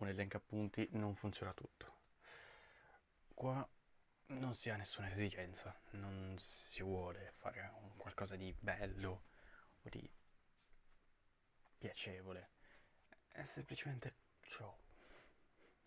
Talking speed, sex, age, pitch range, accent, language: 100 wpm, male, 20-39, 95-120 Hz, native, Italian